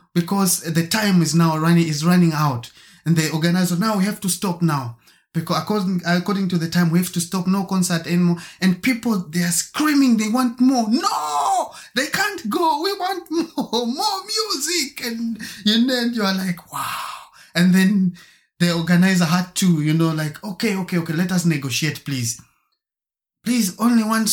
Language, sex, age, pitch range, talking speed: English, male, 20-39, 130-195 Hz, 185 wpm